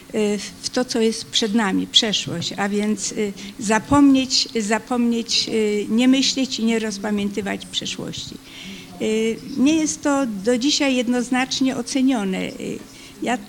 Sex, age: female, 50-69